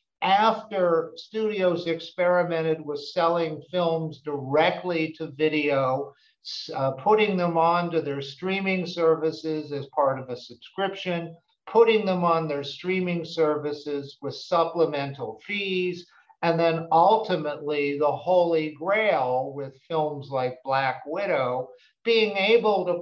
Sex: male